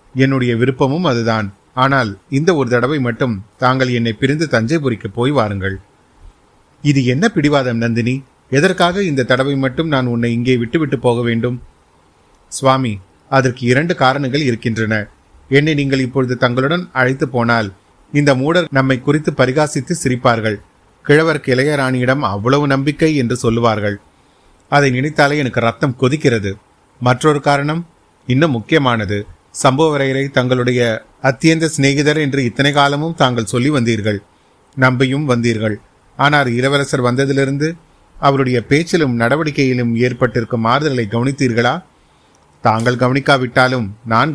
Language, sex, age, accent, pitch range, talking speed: Tamil, male, 30-49, native, 115-140 Hz, 110 wpm